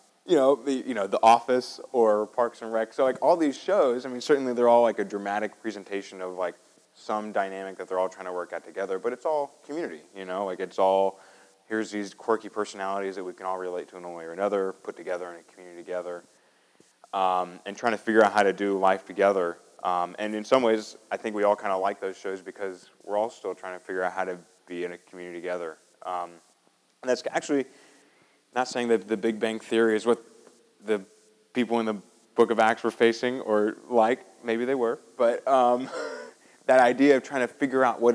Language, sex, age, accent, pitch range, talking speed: English, male, 20-39, American, 95-115 Hz, 225 wpm